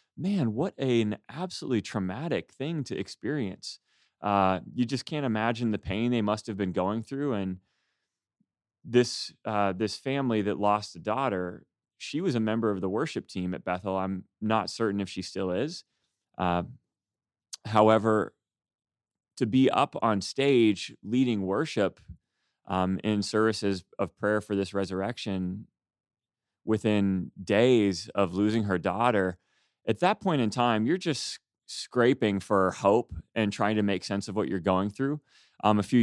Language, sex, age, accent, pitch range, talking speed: English, male, 30-49, American, 95-120 Hz, 155 wpm